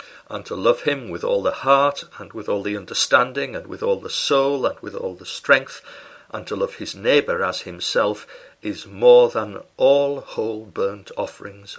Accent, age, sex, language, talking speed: British, 60-79, male, English, 190 wpm